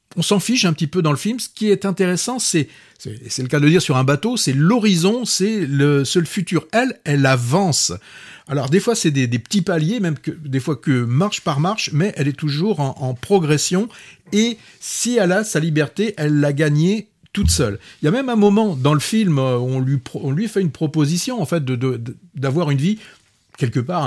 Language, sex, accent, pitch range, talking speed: French, male, French, 130-185 Hz, 235 wpm